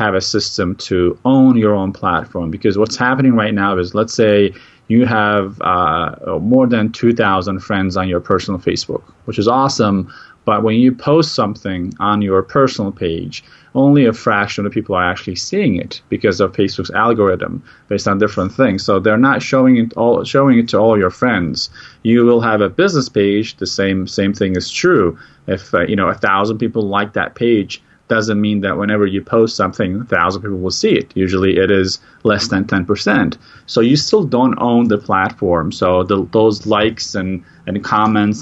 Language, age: English, 30-49